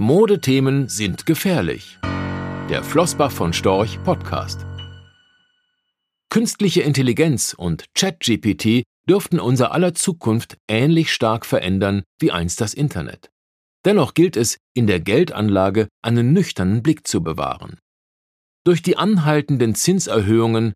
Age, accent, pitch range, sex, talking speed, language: 50-69, German, 105-155 Hz, male, 110 wpm, German